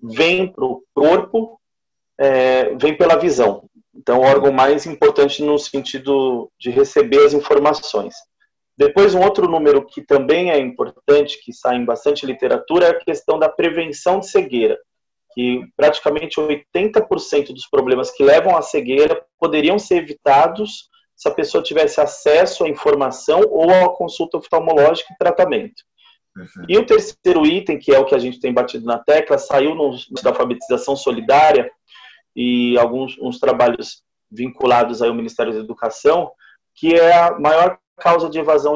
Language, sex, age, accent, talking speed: Portuguese, male, 30-49, Brazilian, 150 wpm